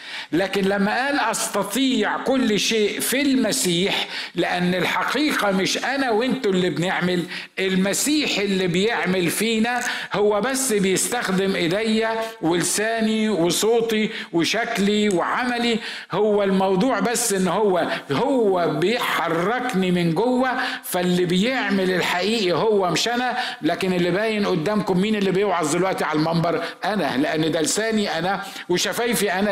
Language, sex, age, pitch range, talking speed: Arabic, male, 50-69, 180-220 Hz, 120 wpm